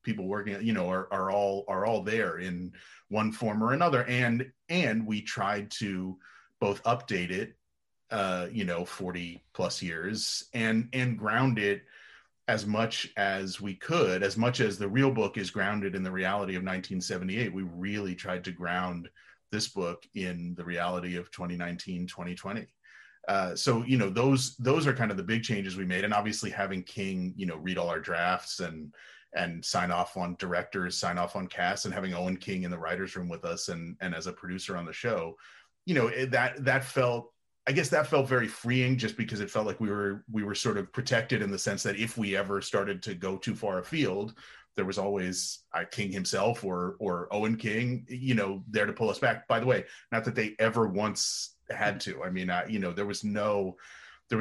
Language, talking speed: English, 205 wpm